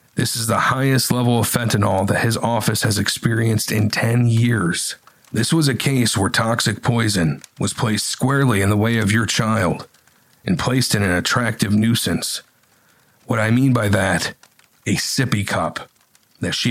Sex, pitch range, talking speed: male, 105-125 Hz, 170 wpm